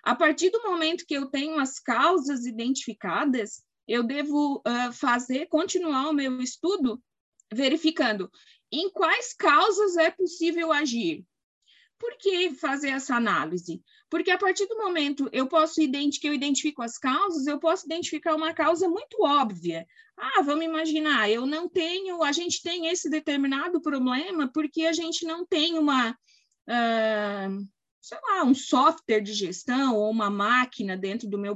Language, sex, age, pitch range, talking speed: Portuguese, female, 20-39, 245-325 Hz, 145 wpm